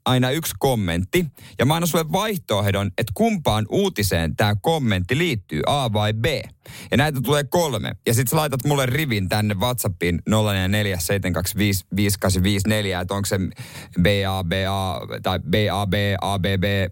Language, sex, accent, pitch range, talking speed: Finnish, male, native, 95-135 Hz, 135 wpm